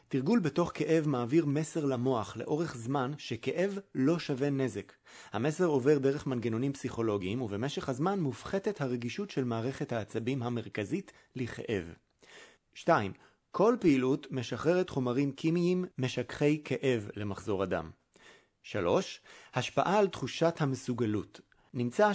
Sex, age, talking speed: male, 30-49, 115 wpm